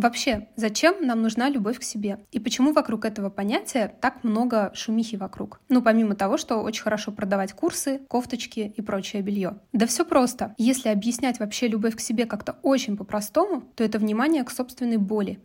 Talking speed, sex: 180 wpm, female